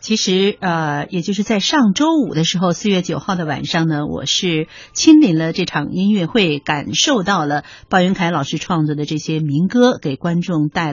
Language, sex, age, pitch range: Chinese, female, 50-69, 165-240 Hz